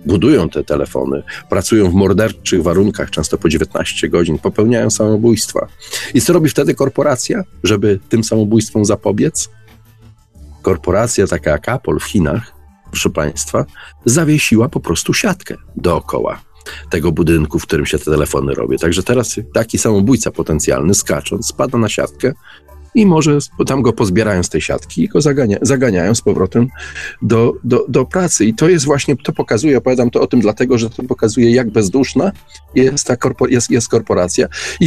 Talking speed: 160 wpm